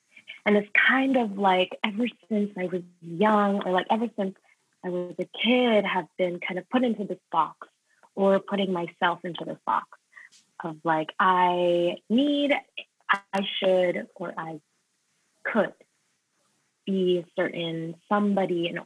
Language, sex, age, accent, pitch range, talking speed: English, female, 20-39, American, 170-200 Hz, 145 wpm